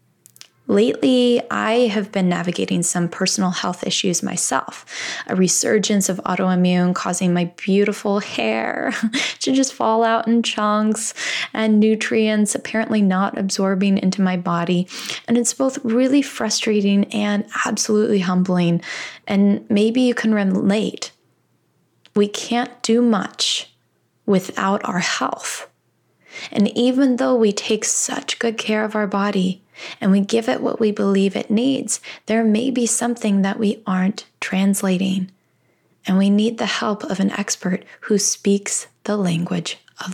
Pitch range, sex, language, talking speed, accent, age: 185-220 Hz, female, English, 140 wpm, American, 10-29